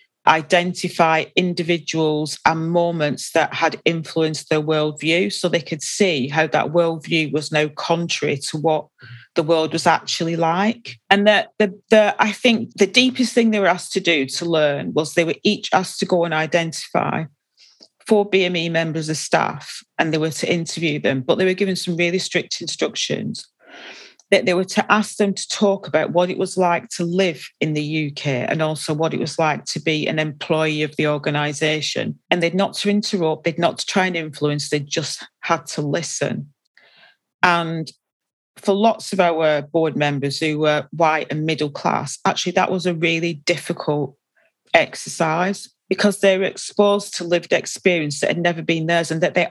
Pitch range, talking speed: 155-190 Hz, 185 wpm